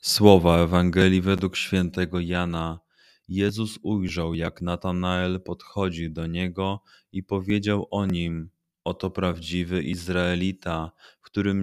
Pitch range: 85-95 Hz